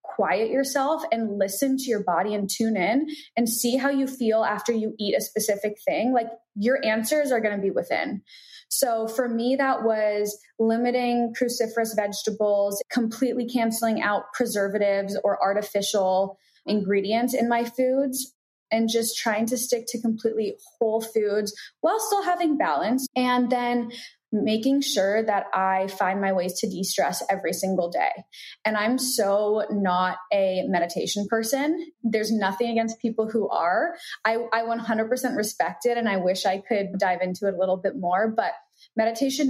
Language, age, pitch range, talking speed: English, 20-39, 200-245 Hz, 160 wpm